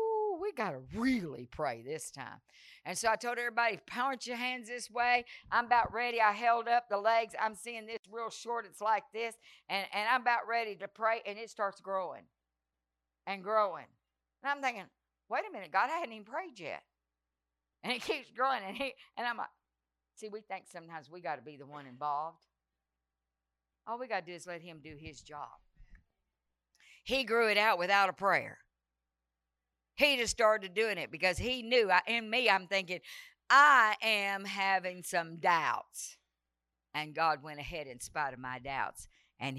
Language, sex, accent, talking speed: English, female, American, 180 wpm